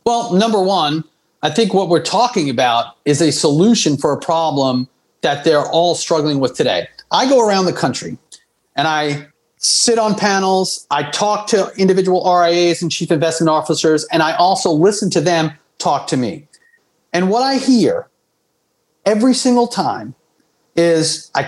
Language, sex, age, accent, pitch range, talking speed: English, male, 40-59, American, 155-210 Hz, 160 wpm